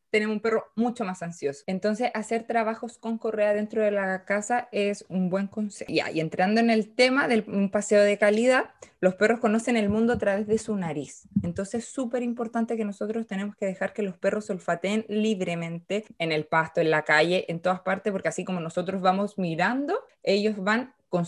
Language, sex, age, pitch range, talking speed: Spanish, female, 20-39, 190-235 Hz, 200 wpm